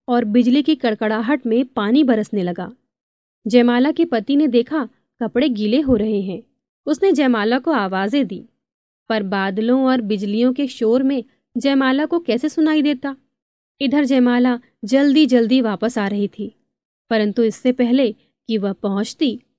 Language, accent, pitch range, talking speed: Hindi, native, 220-275 Hz, 150 wpm